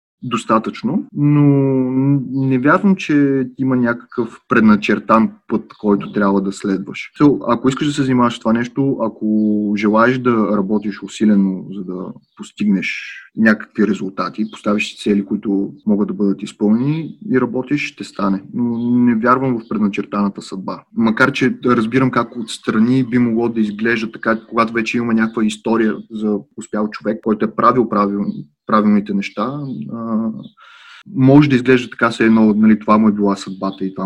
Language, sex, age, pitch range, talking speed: Bulgarian, male, 30-49, 105-130 Hz, 155 wpm